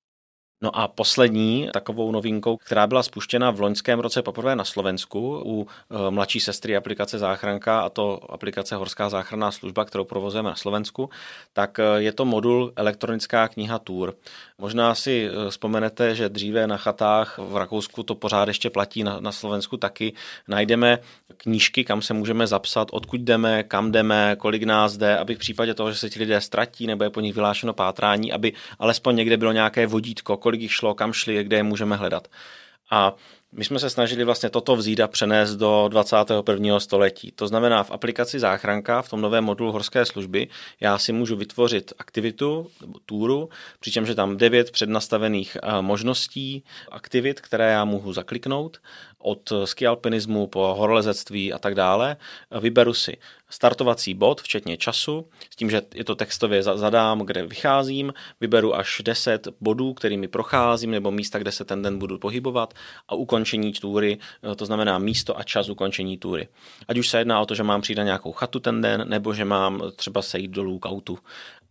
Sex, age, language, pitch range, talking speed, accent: male, 20-39, Czech, 100-115 Hz, 170 wpm, native